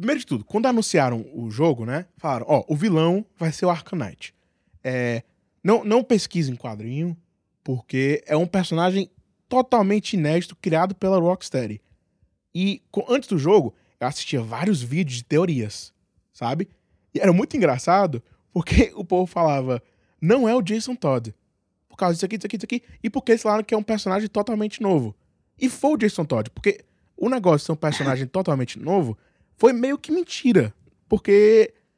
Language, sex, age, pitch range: Portuguese, male, 20-39, 140-220 Hz